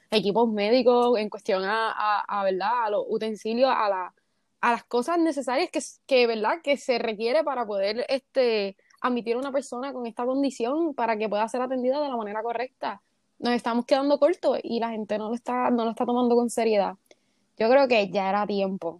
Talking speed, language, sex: 200 wpm, Spanish, female